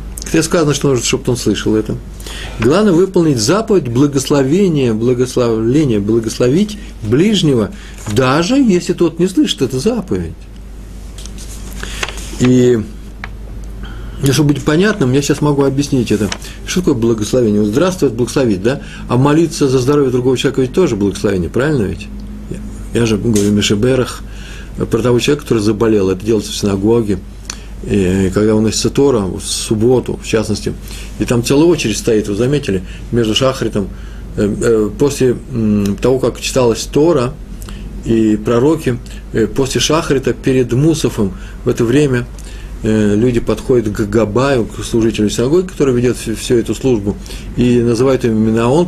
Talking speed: 140 wpm